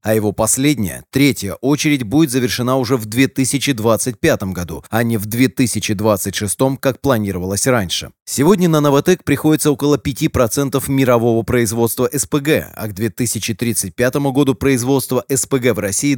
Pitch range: 110-135 Hz